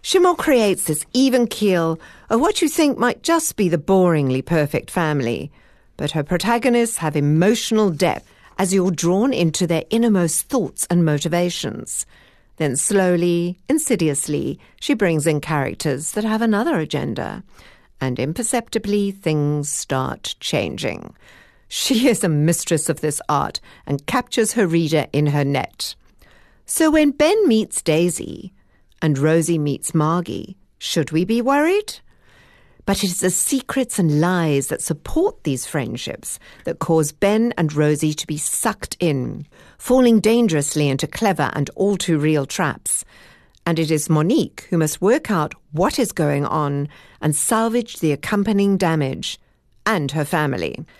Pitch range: 150-225 Hz